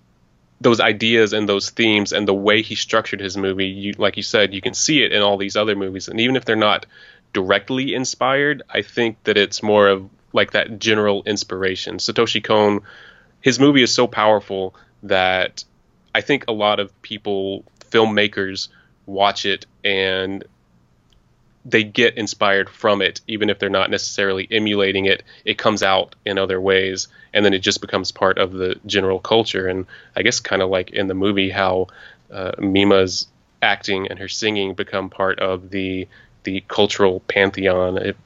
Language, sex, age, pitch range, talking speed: English, male, 20-39, 95-105 Hz, 175 wpm